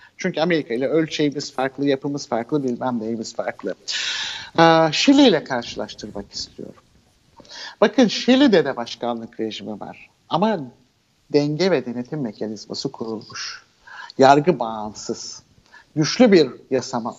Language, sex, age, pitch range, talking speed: Turkish, male, 60-79, 125-190 Hz, 110 wpm